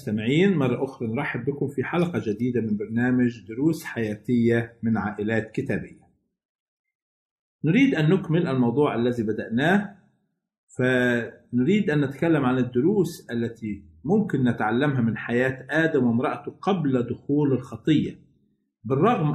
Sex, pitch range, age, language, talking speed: male, 125-165 Hz, 50-69, Arabic, 110 wpm